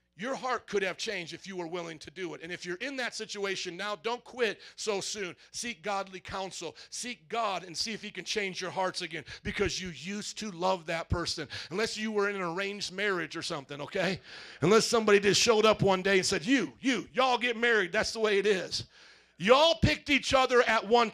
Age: 40-59